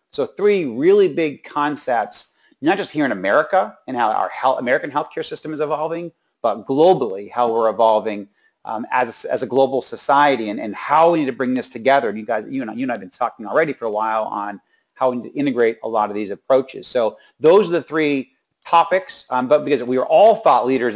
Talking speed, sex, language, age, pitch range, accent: 230 wpm, male, English, 30-49, 120-150 Hz, American